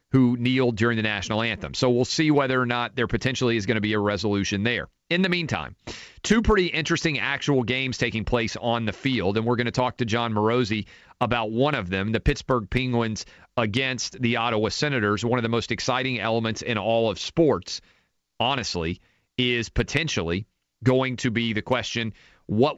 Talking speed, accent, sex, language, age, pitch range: 190 wpm, American, male, English, 40-59, 110-130 Hz